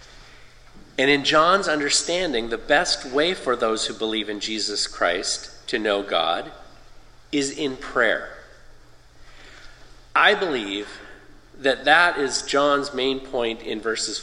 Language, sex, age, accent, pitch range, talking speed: English, male, 40-59, American, 115-150 Hz, 125 wpm